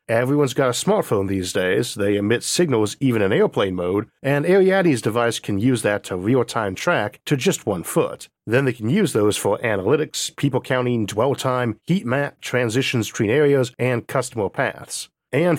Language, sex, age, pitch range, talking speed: English, male, 40-59, 105-135 Hz, 175 wpm